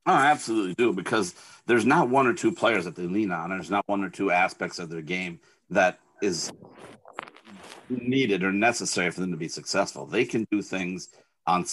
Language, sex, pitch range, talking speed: English, male, 90-105 Hz, 200 wpm